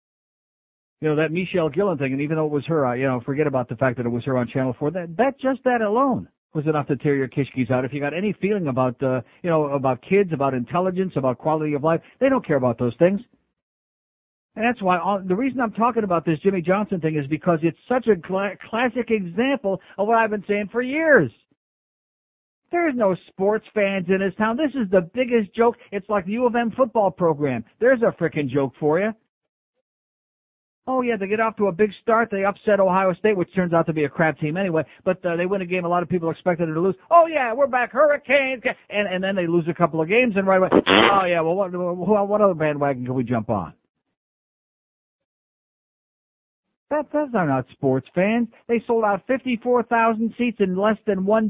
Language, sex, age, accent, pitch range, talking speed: English, male, 60-79, American, 155-225 Hz, 225 wpm